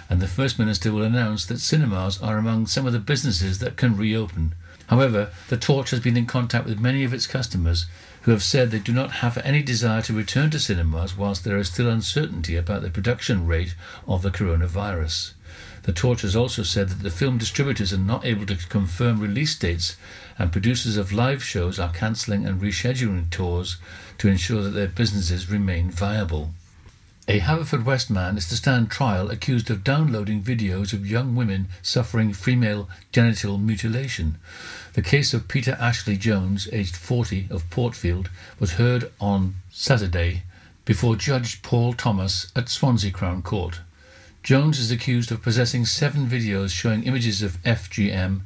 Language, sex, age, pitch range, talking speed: English, male, 60-79, 95-120 Hz, 170 wpm